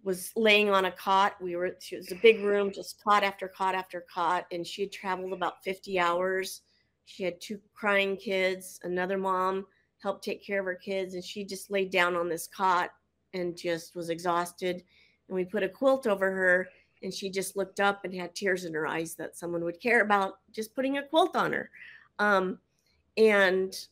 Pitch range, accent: 185-245 Hz, American